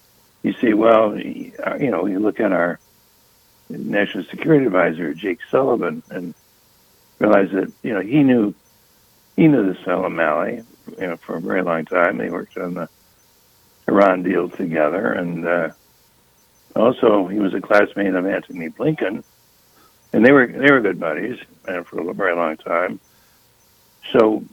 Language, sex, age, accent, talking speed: English, male, 60-79, American, 155 wpm